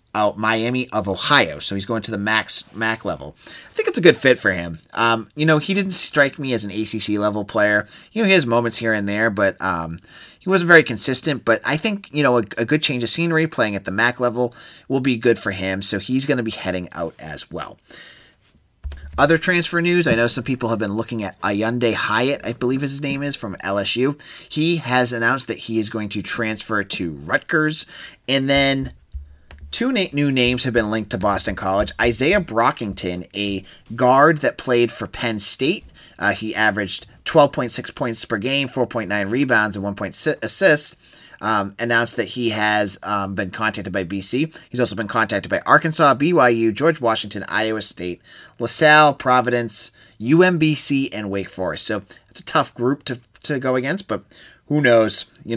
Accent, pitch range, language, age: American, 105-140 Hz, English, 30-49